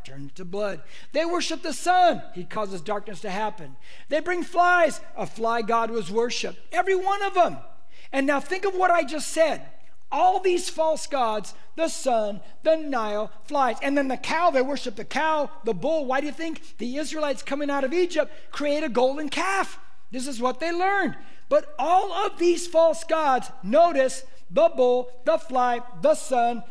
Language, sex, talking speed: English, male, 185 wpm